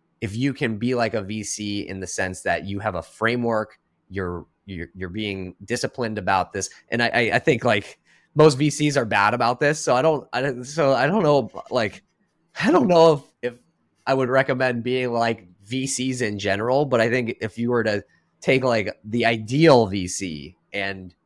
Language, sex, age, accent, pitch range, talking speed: English, male, 20-39, American, 90-120 Hz, 195 wpm